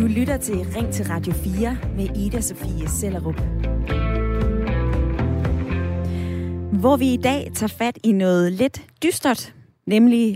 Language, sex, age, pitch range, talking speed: Danish, female, 20-39, 165-235 Hz, 120 wpm